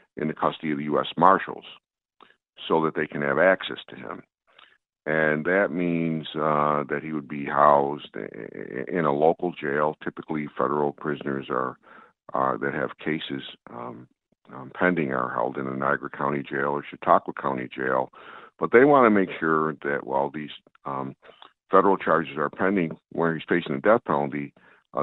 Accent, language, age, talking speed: American, English, 60-79, 170 wpm